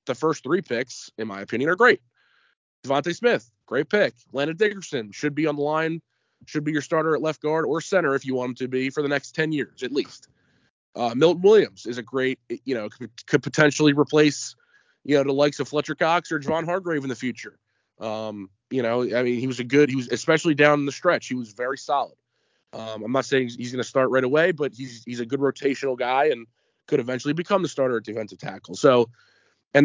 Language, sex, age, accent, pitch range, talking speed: English, male, 20-39, American, 120-150 Hz, 225 wpm